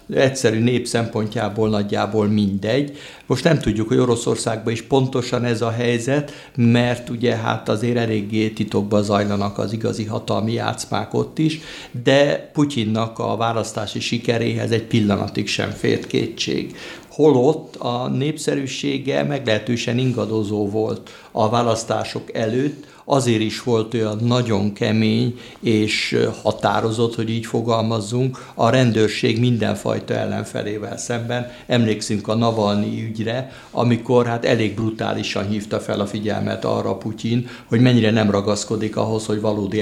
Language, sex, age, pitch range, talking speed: Hungarian, male, 60-79, 110-120 Hz, 125 wpm